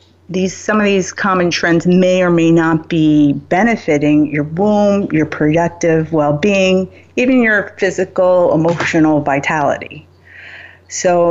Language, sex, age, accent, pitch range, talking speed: English, female, 30-49, American, 160-205 Hz, 125 wpm